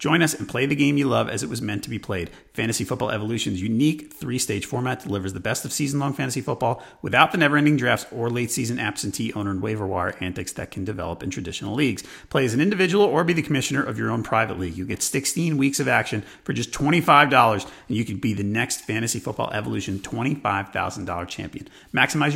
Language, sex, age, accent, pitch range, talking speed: English, male, 30-49, American, 100-140 Hz, 215 wpm